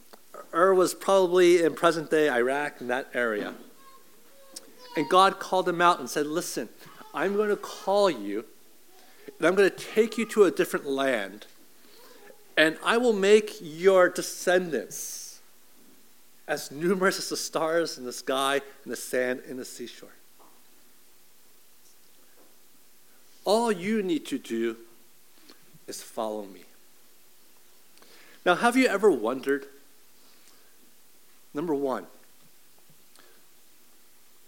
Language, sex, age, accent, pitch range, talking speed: English, male, 50-69, American, 155-230 Hz, 115 wpm